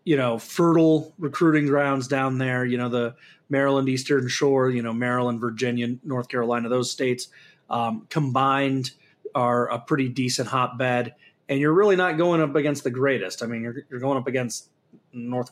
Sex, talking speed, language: male, 175 wpm, English